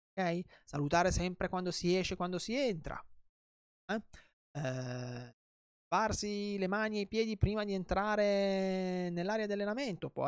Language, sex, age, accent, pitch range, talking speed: Italian, male, 20-39, native, 135-190 Hz, 140 wpm